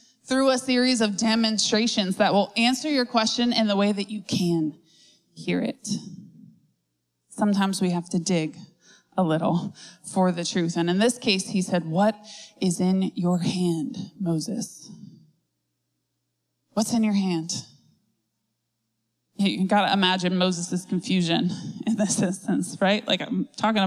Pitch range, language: 175-220 Hz, English